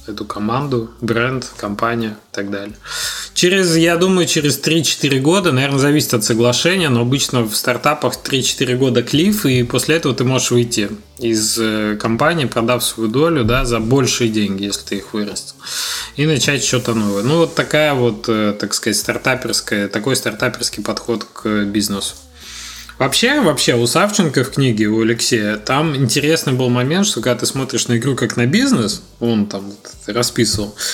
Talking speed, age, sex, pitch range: 165 wpm, 20-39, male, 110-150 Hz